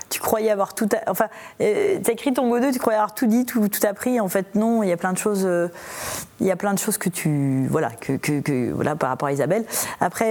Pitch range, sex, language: 180-235 Hz, female, French